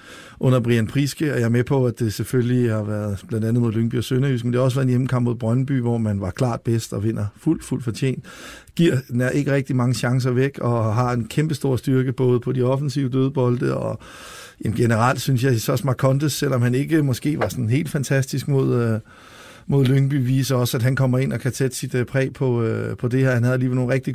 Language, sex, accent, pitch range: Danish, male, native, 120-135 Hz